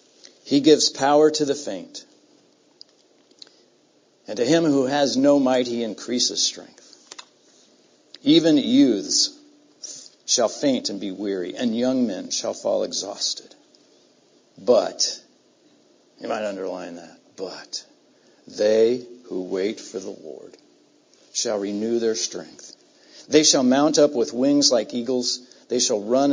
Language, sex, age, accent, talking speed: English, male, 60-79, American, 130 wpm